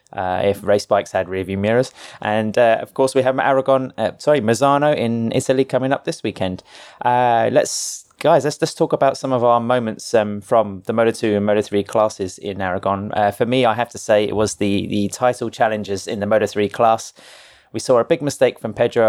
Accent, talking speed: British, 215 wpm